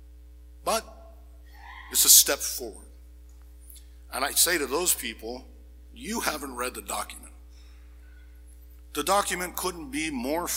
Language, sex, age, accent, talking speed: English, male, 60-79, American, 120 wpm